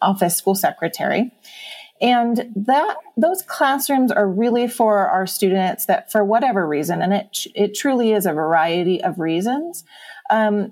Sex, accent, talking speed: female, American, 145 wpm